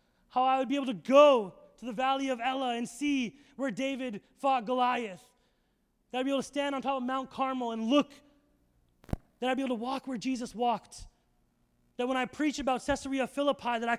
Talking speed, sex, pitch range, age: 210 wpm, male, 230-275 Hz, 20-39